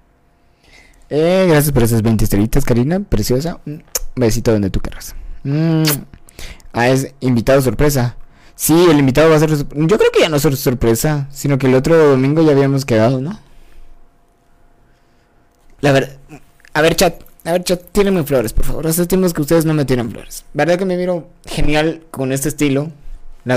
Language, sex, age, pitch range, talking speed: Spanish, male, 20-39, 125-160 Hz, 175 wpm